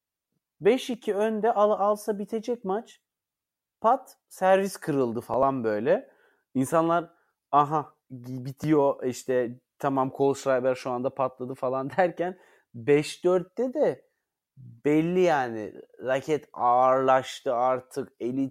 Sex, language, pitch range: male, Turkish, 130-165 Hz